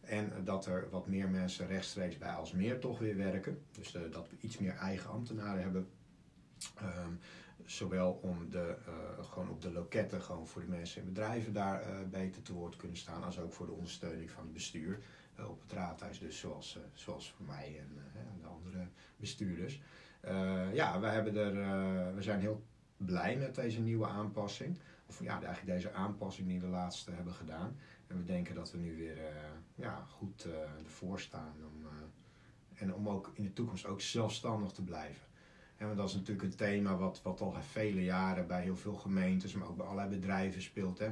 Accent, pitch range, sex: Dutch, 90-105 Hz, male